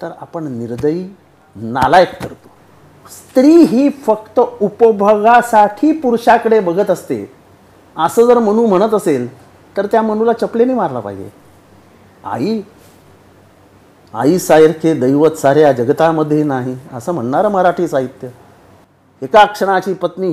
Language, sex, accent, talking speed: Marathi, male, native, 110 wpm